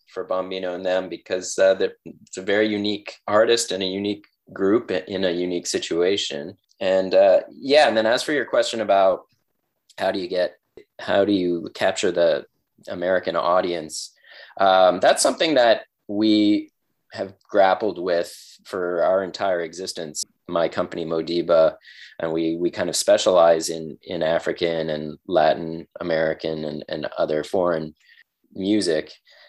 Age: 20-39